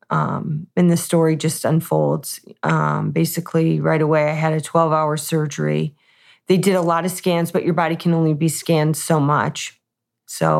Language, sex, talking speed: English, female, 175 wpm